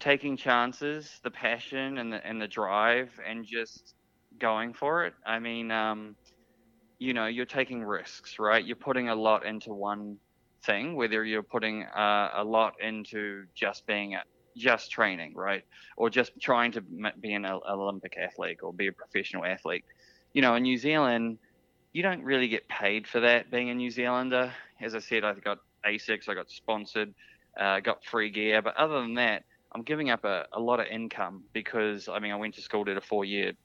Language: English